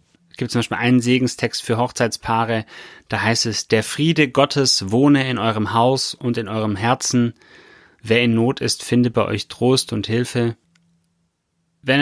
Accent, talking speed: German, 165 wpm